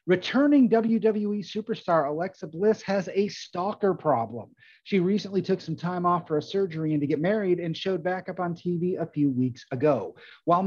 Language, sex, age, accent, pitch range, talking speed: English, male, 30-49, American, 155-220 Hz, 185 wpm